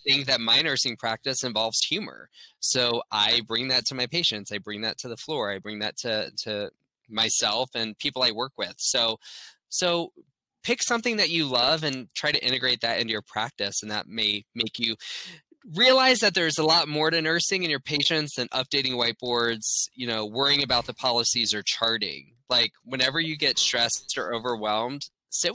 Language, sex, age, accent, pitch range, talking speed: English, male, 20-39, American, 115-170 Hz, 190 wpm